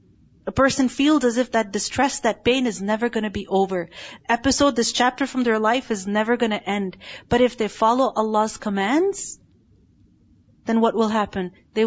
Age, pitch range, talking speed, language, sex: 30-49, 220-275 Hz, 185 wpm, English, female